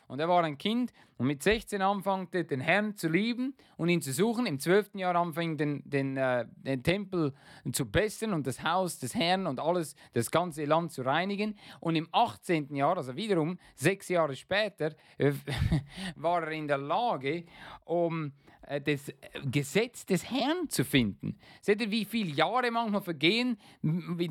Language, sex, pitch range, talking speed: German, male, 130-180 Hz, 175 wpm